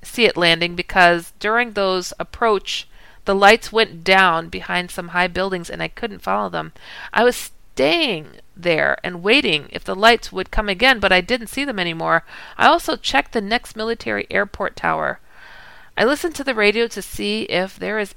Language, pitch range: English, 180-235 Hz